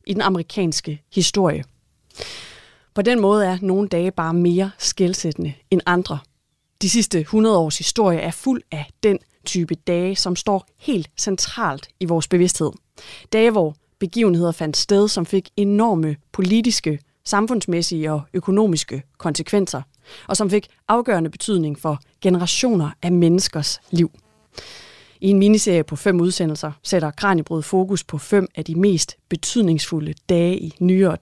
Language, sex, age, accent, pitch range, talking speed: Danish, female, 30-49, native, 155-200 Hz, 140 wpm